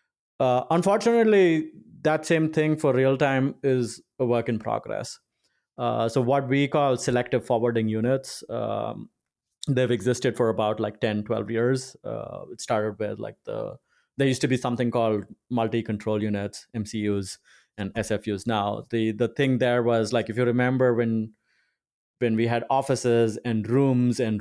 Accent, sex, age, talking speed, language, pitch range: Indian, male, 30-49, 155 wpm, English, 110-130 Hz